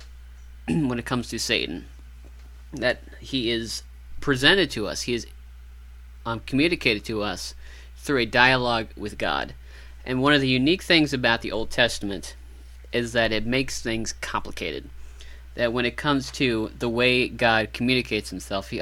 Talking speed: 155 wpm